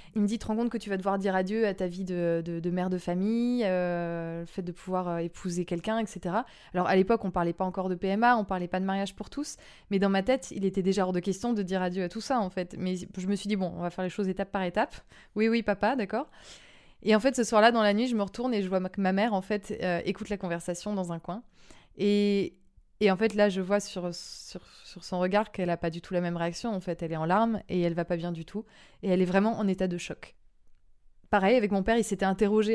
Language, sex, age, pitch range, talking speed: French, female, 20-39, 180-210 Hz, 290 wpm